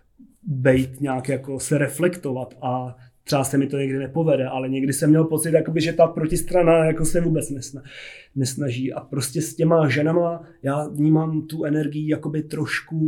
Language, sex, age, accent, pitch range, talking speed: Czech, male, 30-49, native, 135-155 Hz, 145 wpm